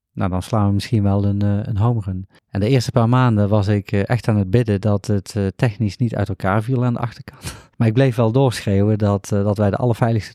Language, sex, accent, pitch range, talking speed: Dutch, male, Dutch, 100-125 Hz, 240 wpm